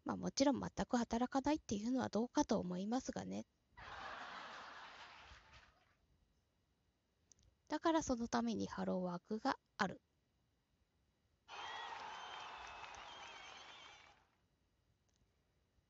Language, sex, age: Japanese, female, 20-39